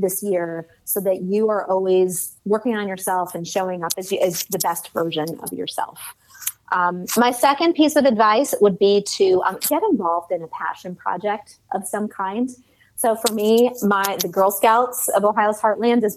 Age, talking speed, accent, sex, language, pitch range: 30-49, 190 wpm, American, female, English, 180-230 Hz